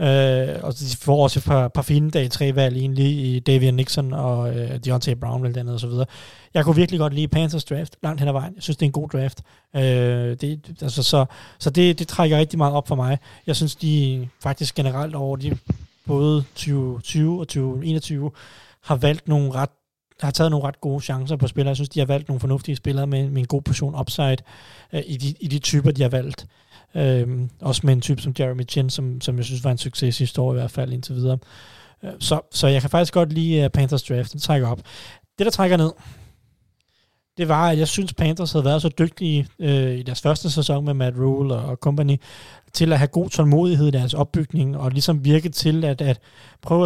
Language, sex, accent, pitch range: Danish, male, native, 130-150 Hz